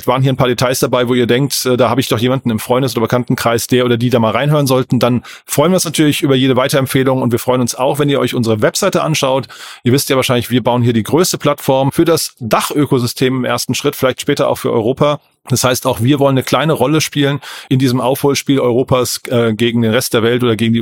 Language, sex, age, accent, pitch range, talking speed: German, male, 30-49, German, 125-145 Hz, 250 wpm